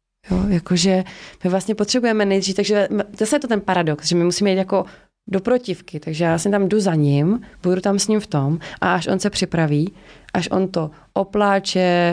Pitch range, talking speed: 160-200 Hz, 205 wpm